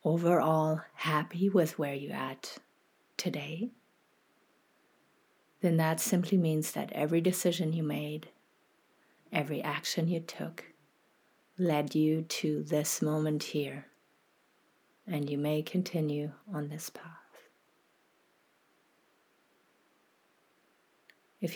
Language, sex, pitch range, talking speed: English, female, 155-175 Hz, 95 wpm